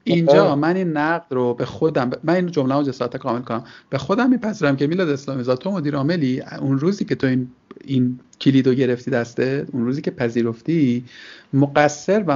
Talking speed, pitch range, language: 190 wpm, 125-165 Hz, Persian